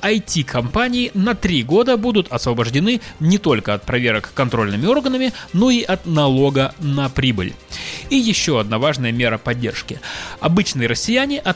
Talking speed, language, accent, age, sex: 140 wpm, Russian, native, 20-39, male